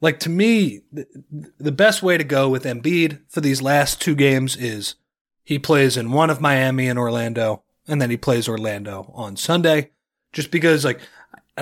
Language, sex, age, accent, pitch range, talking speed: English, male, 30-49, American, 125-165 Hz, 180 wpm